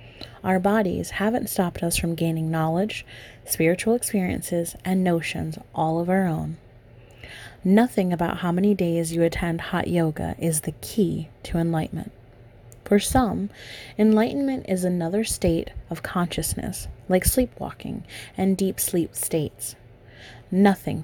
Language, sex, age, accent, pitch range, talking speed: English, female, 30-49, American, 120-195 Hz, 130 wpm